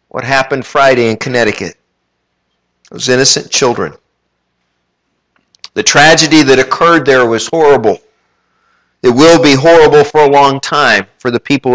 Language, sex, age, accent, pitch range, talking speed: English, male, 50-69, American, 125-165 Hz, 135 wpm